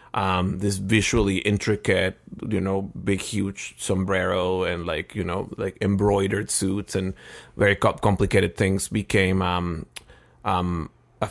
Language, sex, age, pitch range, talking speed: English, male, 30-49, 95-110 Hz, 125 wpm